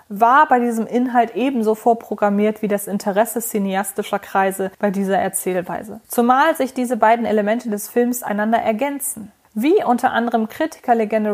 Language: German